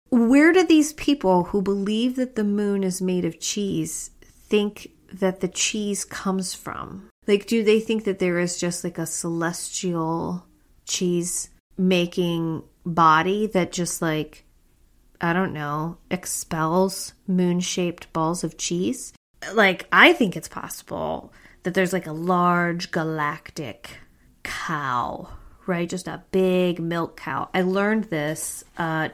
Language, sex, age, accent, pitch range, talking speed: English, female, 30-49, American, 160-190 Hz, 135 wpm